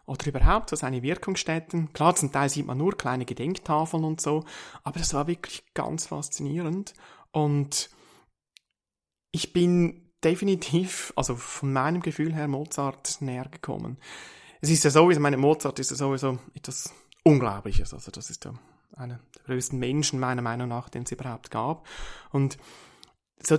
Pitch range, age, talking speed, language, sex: 135-170 Hz, 30-49, 155 wpm, German, male